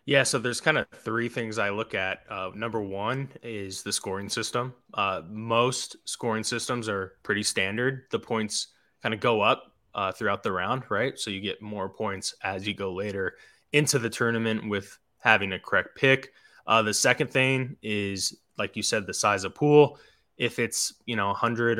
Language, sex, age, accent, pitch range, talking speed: English, male, 20-39, American, 100-125 Hz, 195 wpm